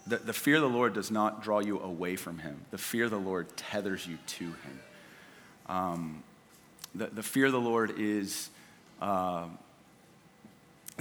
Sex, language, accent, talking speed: male, English, American, 170 wpm